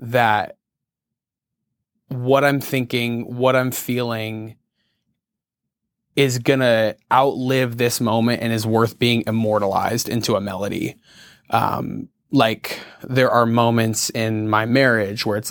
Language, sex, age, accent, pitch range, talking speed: English, male, 20-39, American, 115-130 Hz, 120 wpm